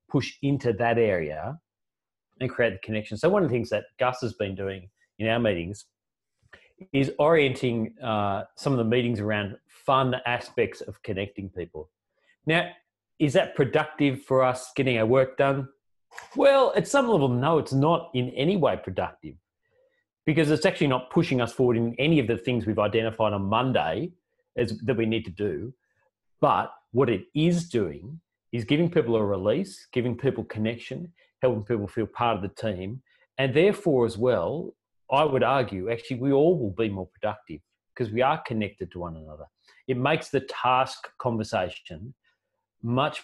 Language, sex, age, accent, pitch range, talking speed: English, male, 30-49, Australian, 105-135 Hz, 170 wpm